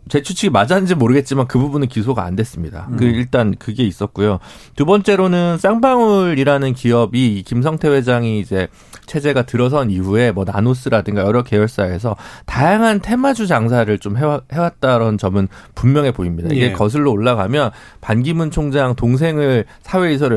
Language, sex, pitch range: Korean, male, 110-170 Hz